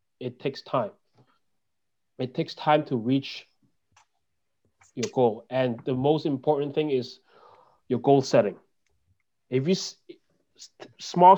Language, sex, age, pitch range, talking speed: English, male, 30-49, 120-150 Hz, 115 wpm